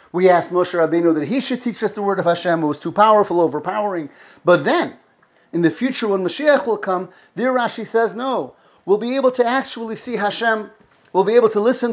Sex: male